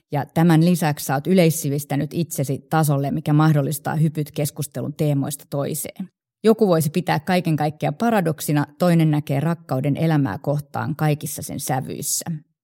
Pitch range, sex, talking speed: 145-165 Hz, female, 130 wpm